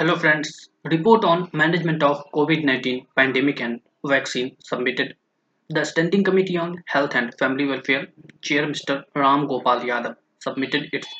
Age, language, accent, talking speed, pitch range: 20-39, English, Indian, 140 wpm, 135-165 Hz